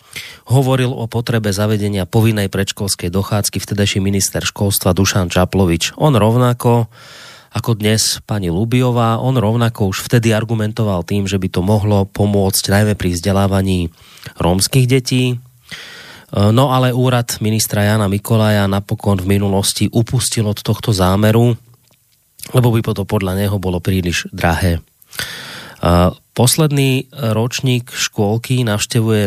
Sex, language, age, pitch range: male, Slovak, 30-49, 100-120 Hz